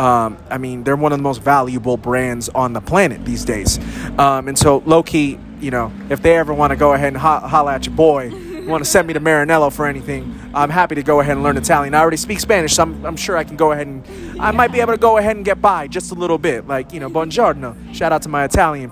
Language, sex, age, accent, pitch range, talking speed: English, male, 20-39, American, 130-170 Hz, 275 wpm